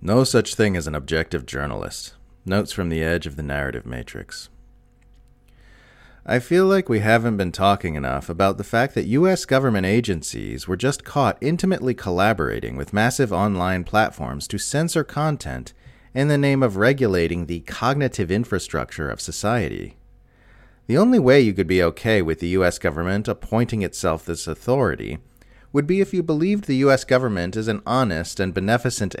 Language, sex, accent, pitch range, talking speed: English, male, American, 85-125 Hz, 165 wpm